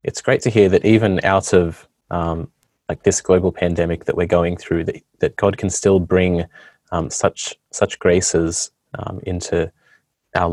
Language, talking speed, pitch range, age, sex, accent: English, 170 wpm, 85-100 Hz, 20-39, male, Australian